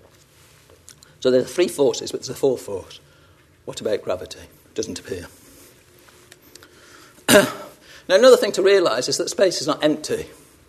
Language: English